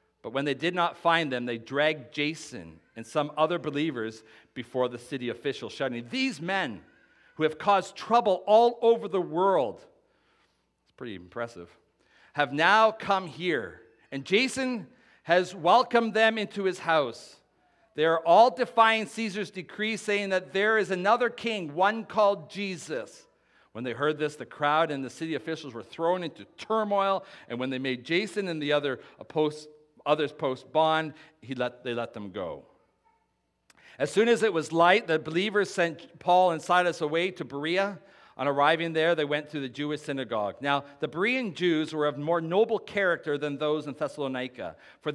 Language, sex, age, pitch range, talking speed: English, male, 40-59, 135-195 Hz, 170 wpm